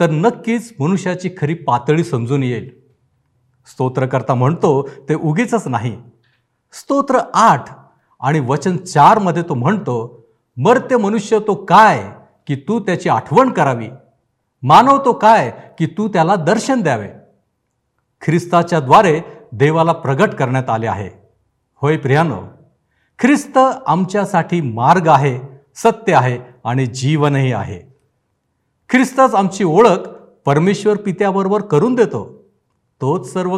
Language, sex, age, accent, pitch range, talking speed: Marathi, male, 60-79, native, 125-185 Hz, 110 wpm